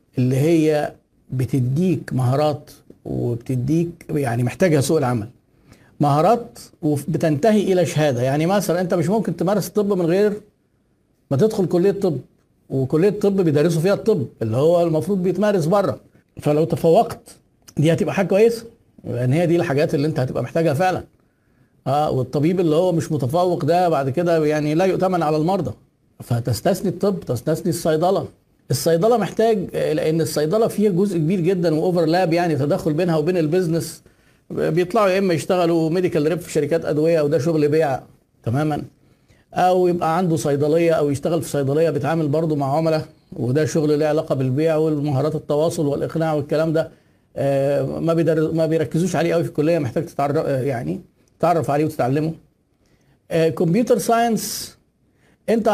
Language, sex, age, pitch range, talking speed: Arabic, male, 50-69, 150-180 Hz, 145 wpm